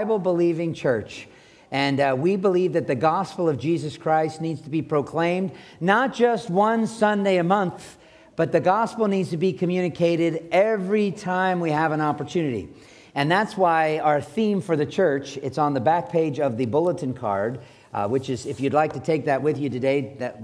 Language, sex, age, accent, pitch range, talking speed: English, male, 50-69, American, 140-180 Hz, 190 wpm